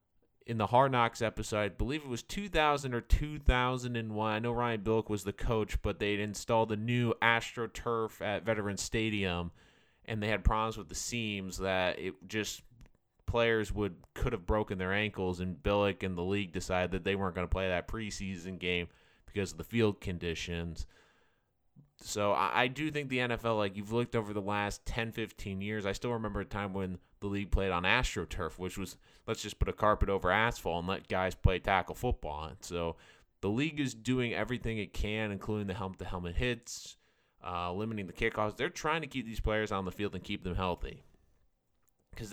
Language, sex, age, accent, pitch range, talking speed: English, male, 20-39, American, 95-115 Hz, 195 wpm